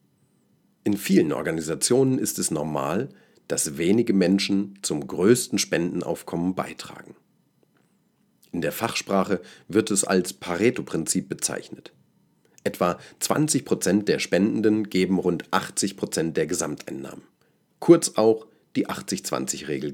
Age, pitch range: 40-59, 90-110 Hz